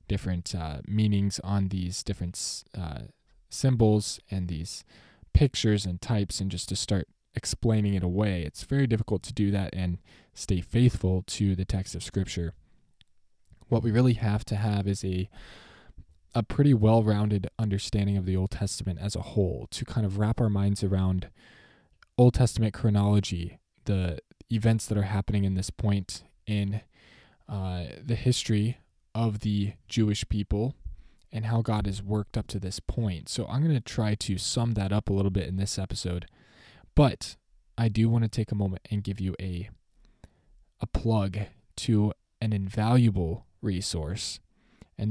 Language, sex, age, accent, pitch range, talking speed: English, male, 20-39, American, 95-110 Hz, 165 wpm